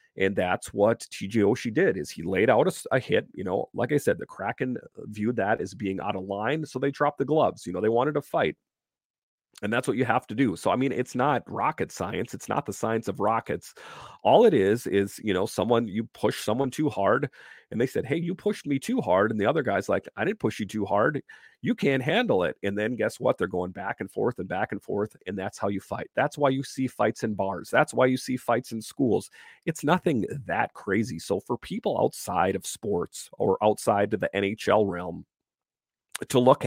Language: English